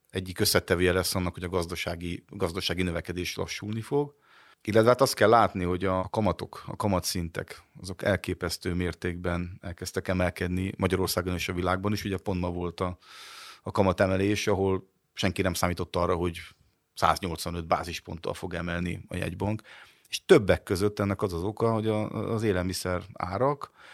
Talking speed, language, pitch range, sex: 150 wpm, Hungarian, 90-105 Hz, male